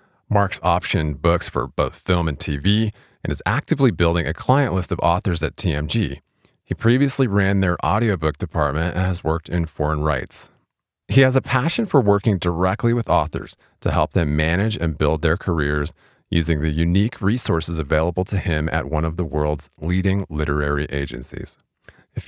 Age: 30-49